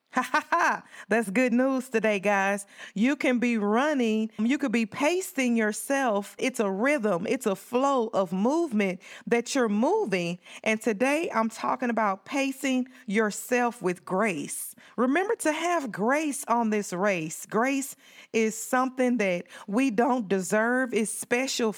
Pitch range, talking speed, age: 205-255 Hz, 140 wpm, 40-59